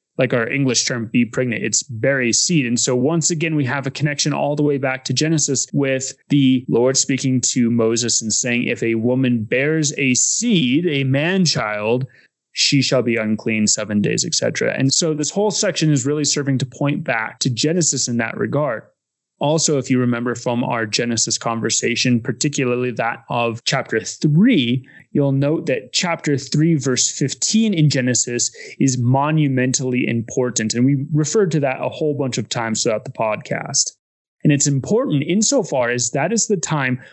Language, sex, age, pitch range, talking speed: English, male, 20-39, 125-155 Hz, 180 wpm